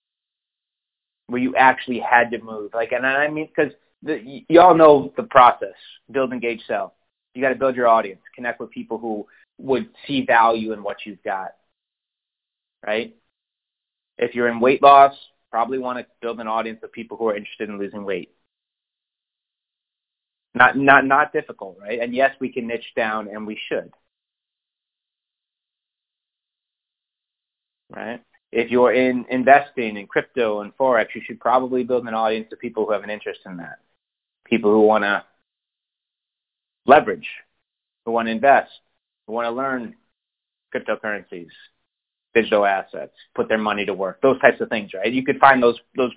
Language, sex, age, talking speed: English, male, 30-49, 160 wpm